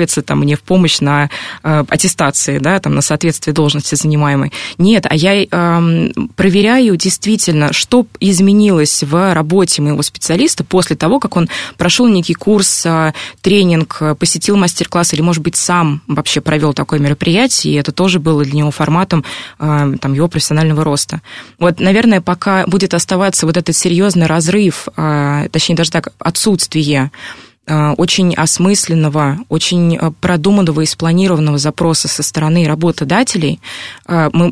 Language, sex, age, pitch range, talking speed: Russian, female, 20-39, 155-185 Hz, 130 wpm